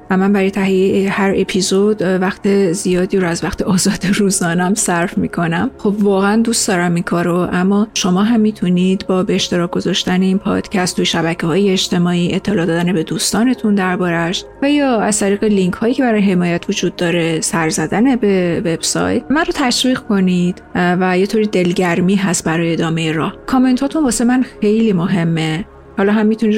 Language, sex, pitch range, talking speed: Persian, female, 175-205 Hz, 170 wpm